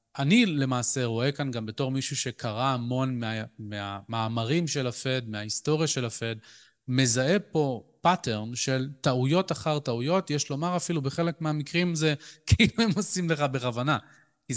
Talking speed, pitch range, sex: 150 wpm, 115-150 Hz, male